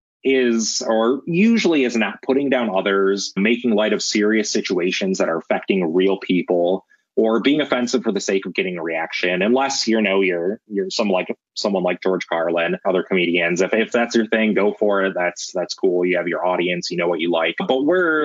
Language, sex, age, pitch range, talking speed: English, male, 20-39, 95-130 Hz, 205 wpm